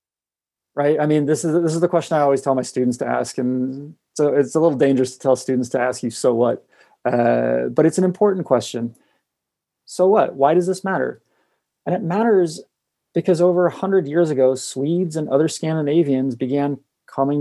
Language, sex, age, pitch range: English, male, 30-49, 125-150 Hz